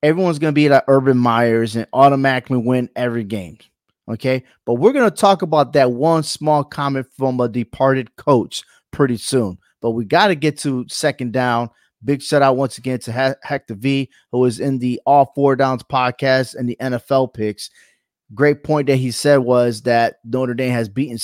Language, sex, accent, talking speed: English, male, American, 195 wpm